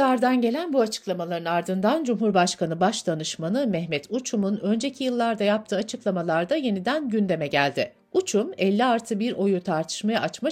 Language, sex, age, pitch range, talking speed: Turkish, female, 60-79, 175-250 Hz, 125 wpm